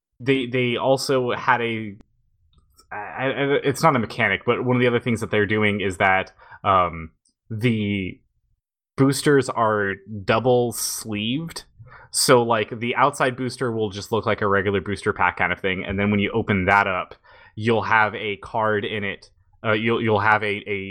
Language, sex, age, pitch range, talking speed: English, male, 20-39, 100-120 Hz, 175 wpm